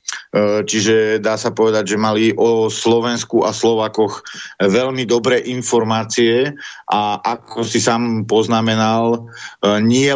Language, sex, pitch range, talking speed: Slovak, male, 110-120 Hz, 110 wpm